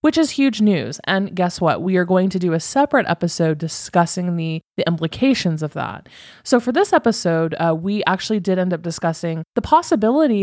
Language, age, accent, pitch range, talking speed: English, 20-39, American, 170-210 Hz, 195 wpm